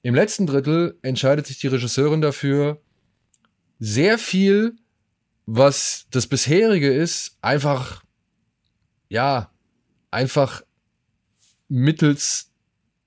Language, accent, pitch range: German, German, 115-155 Hz